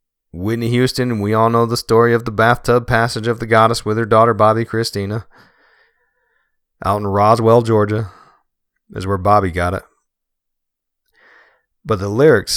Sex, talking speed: male, 155 wpm